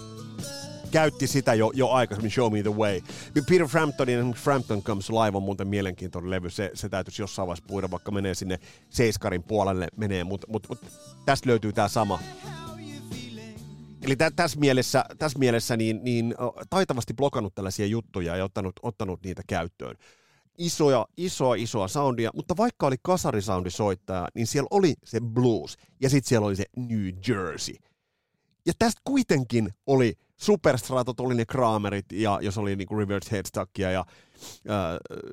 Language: Finnish